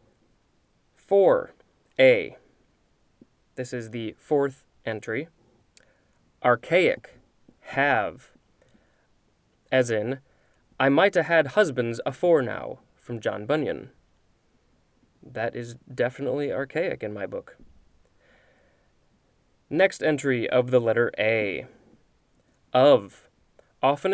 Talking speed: 90 wpm